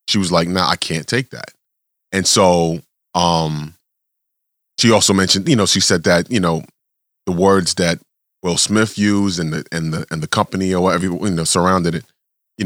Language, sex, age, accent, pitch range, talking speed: English, male, 30-49, American, 85-105 Hz, 195 wpm